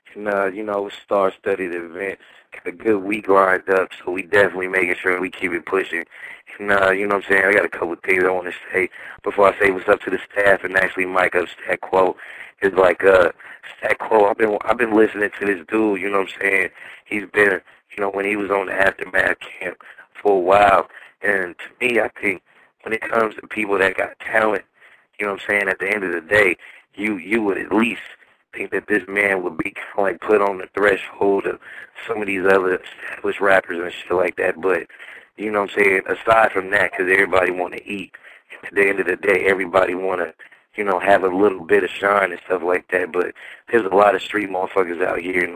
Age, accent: 20-39, American